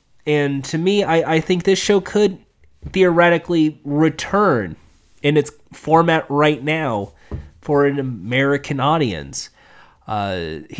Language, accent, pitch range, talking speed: English, American, 130-170 Hz, 115 wpm